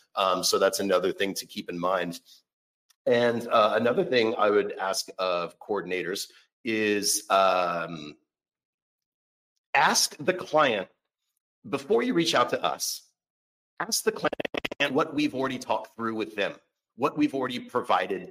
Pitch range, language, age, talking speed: 100-140 Hz, English, 40-59, 140 wpm